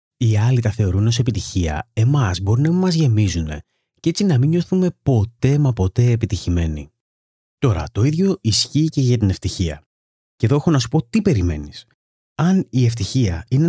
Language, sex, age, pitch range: Greek, male, 30-49, 95-125 Hz